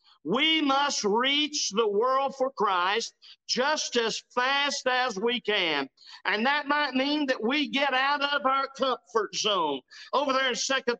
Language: English